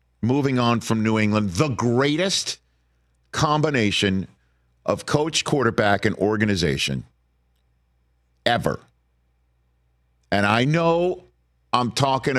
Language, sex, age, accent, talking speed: English, male, 50-69, American, 90 wpm